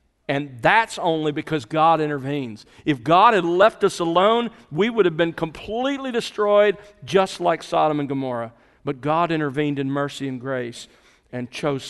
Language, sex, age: English, male, 50-69